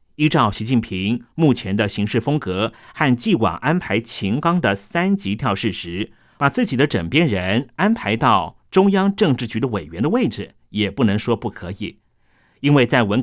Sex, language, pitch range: male, Chinese, 105-150 Hz